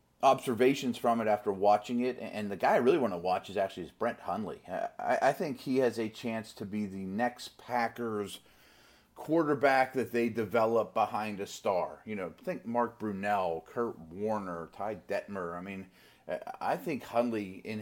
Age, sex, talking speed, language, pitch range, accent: 30-49, male, 175 wpm, English, 95-120 Hz, American